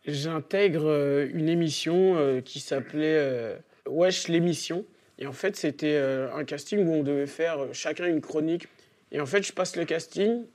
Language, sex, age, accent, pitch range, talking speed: French, male, 40-59, French, 145-175 Hz, 165 wpm